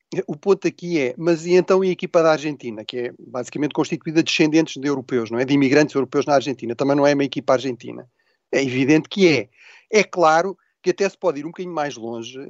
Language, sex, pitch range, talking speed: Portuguese, male, 145-185 Hz, 230 wpm